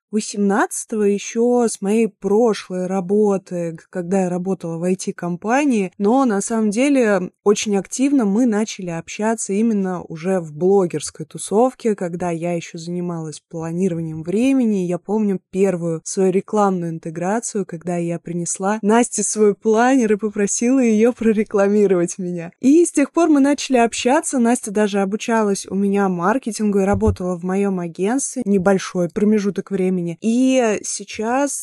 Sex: female